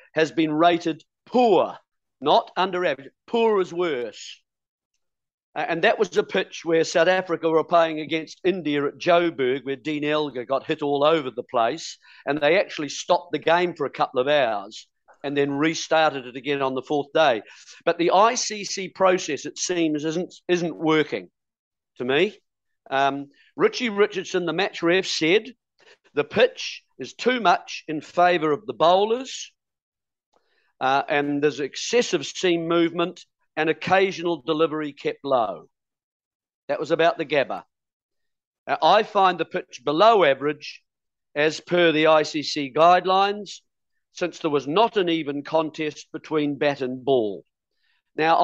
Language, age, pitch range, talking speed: English, 50-69, 150-185 Hz, 150 wpm